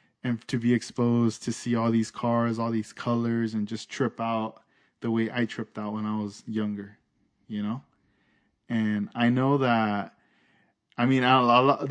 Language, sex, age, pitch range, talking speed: English, male, 20-39, 105-125 Hz, 175 wpm